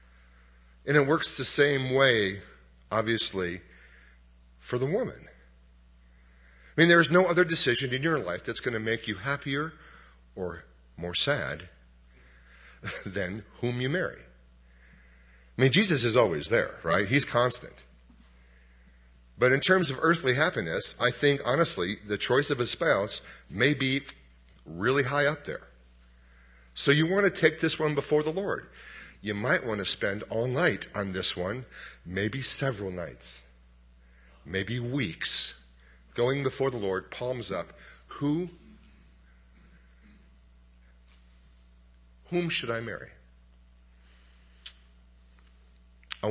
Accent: American